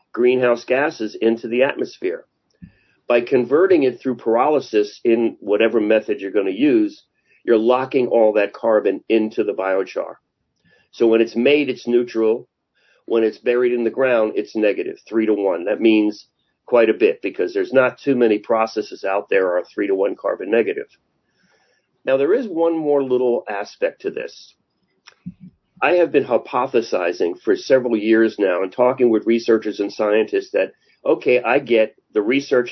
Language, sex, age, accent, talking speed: English, male, 40-59, American, 165 wpm